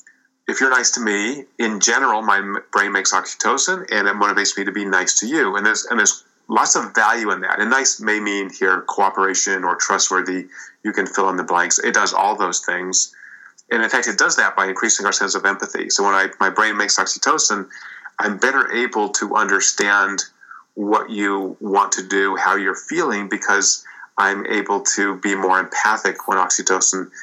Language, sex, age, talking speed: English, male, 30-49, 195 wpm